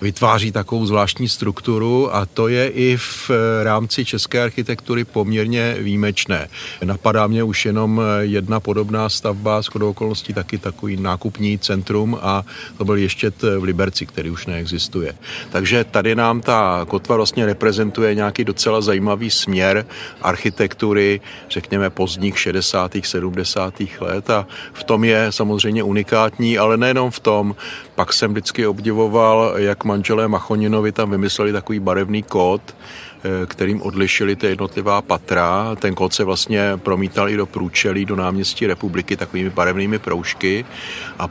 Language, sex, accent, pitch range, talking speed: Czech, male, native, 95-110 Hz, 140 wpm